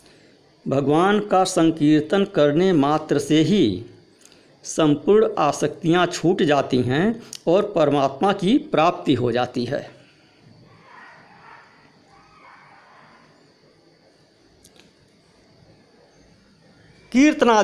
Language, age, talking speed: Hindi, 50-69, 70 wpm